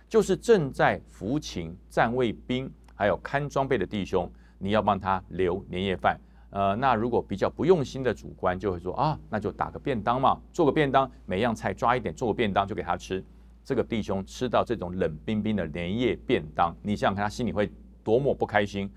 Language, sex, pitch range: Chinese, male, 90-125 Hz